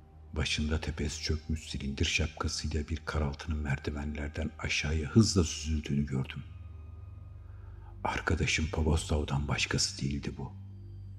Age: 60-79